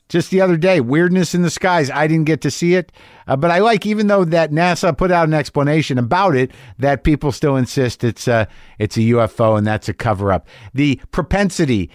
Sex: male